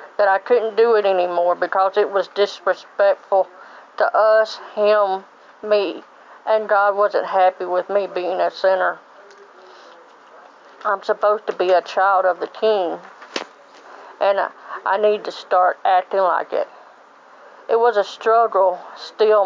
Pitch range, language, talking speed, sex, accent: 185-210 Hz, English, 140 wpm, female, American